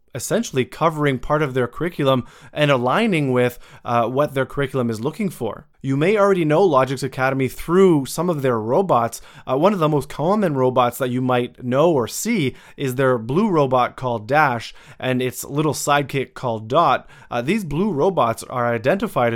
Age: 20-39